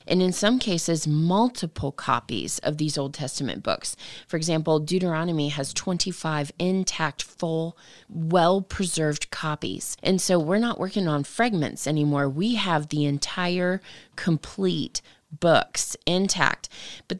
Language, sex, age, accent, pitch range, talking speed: English, female, 30-49, American, 155-185 Hz, 125 wpm